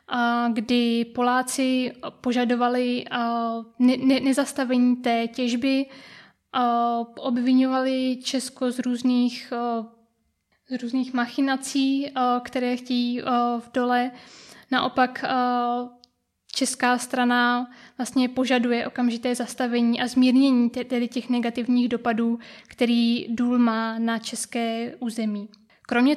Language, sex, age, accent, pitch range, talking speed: Czech, female, 20-39, native, 235-255 Hz, 90 wpm